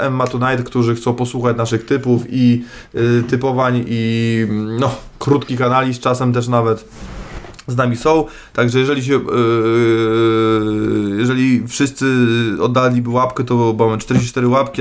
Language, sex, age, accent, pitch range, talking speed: Polish, male, 20-39, native, 115-135 Hz, 130 wpm